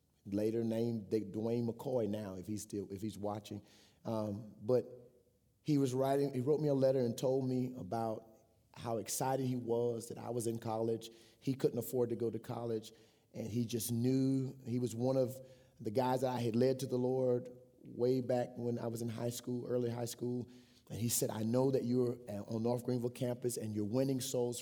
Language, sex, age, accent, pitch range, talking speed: English, male, 30-49, American, 115-130 Hz, 205 wpm